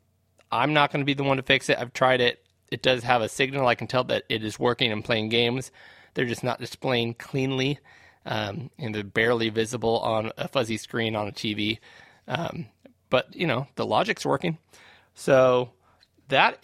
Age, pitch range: 30-49, 115-140 Hz